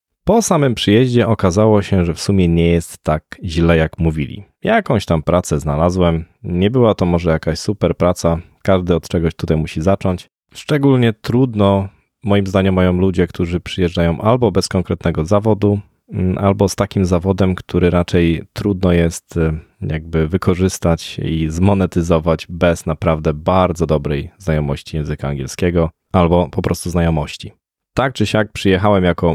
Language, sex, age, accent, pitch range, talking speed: Polish, male, 20-39, native, 85-105 Hz, 145 wpm